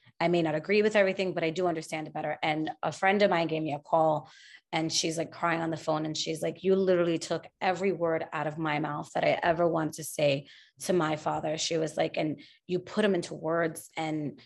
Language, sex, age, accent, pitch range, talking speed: English, female, 30-49, American, 160-190 Hz, 245 wpm